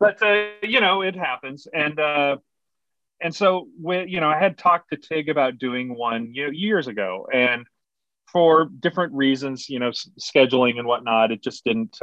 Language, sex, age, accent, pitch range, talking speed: English, male, 30-49, American, 110-150 Hz, 185 wpm